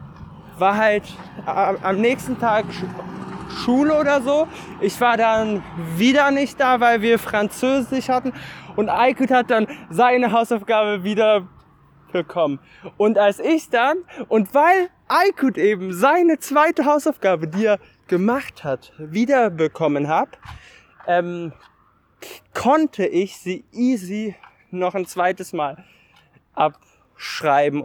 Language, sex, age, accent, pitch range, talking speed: German, male, 20-39, German, 150-220 Hz, 115 wpm